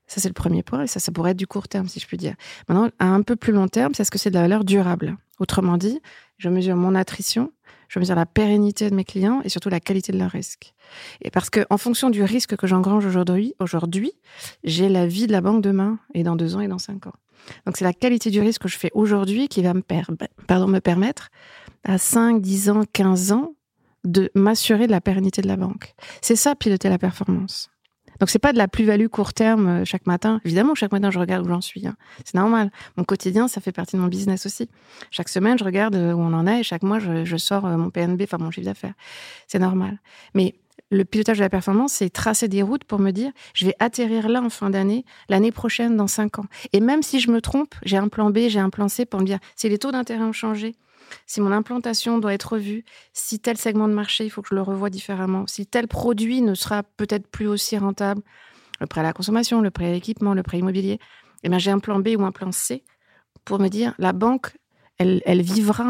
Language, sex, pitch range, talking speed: French, female, 185-225 Hz, 245 wpm